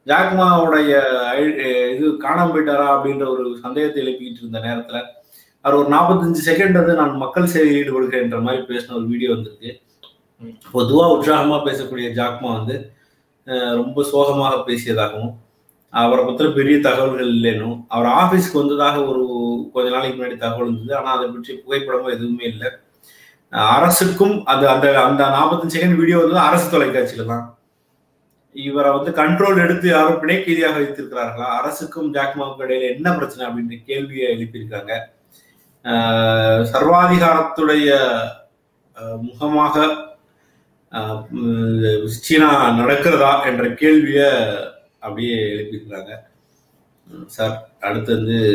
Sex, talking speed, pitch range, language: male, 110 wpm, 120-150 Hz, Tamil